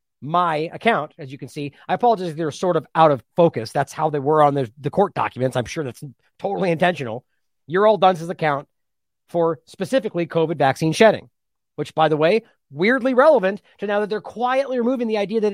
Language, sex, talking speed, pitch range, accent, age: English, male, 200 wpm, 155-205 Hz, American, 40-59